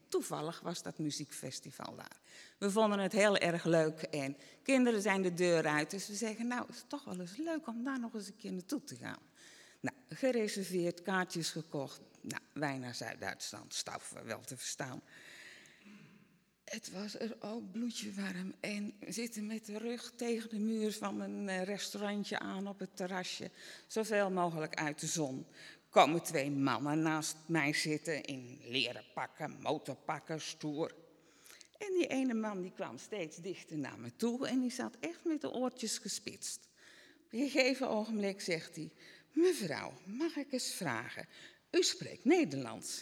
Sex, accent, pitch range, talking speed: female, Dutch, 160-245 Hz, 165 wpm